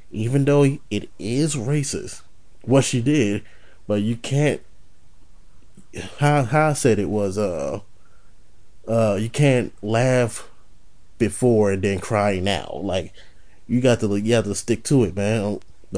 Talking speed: 145 wpm